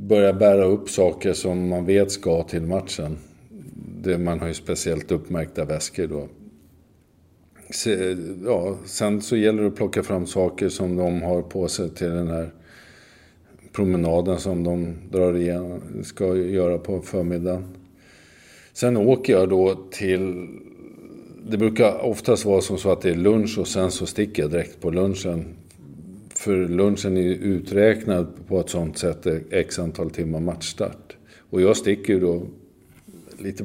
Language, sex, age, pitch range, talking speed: English, male, 50-69, 85-105 Hz, 155 wpm